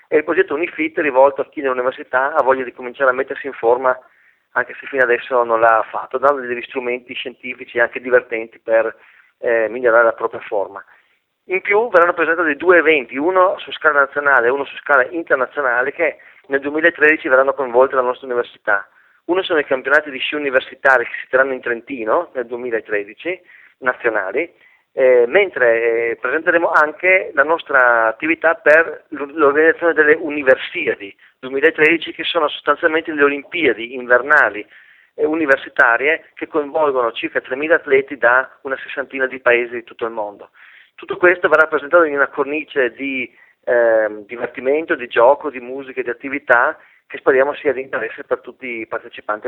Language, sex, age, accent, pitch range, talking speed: Italian, male, 30-49, native, 120-160 Hz, 160 wpm